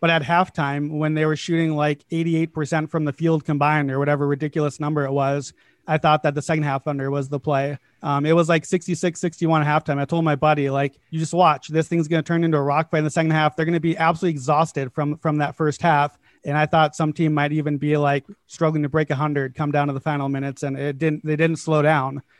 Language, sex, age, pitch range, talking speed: English, male, 30-49, 145-160 Hz, 250 wpm